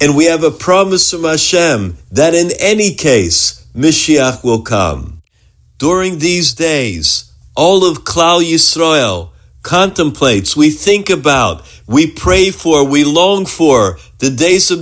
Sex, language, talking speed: male, English, 140 wpm